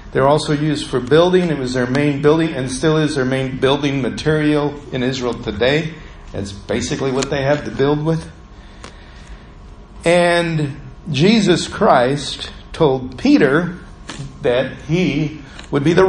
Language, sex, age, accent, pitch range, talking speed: English, male, 50-69, American, 120-160 Hz, 140 wpm